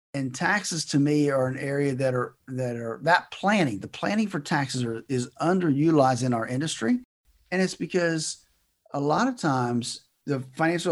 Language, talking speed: English, 175 wpm